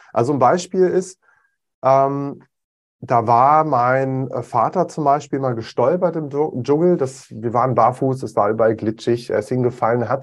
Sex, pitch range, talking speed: male, 120-165 Hz, 160 wpm